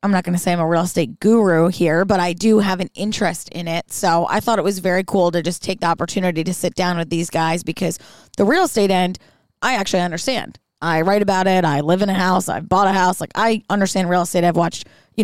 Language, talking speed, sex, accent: English, 260 wpm, female, American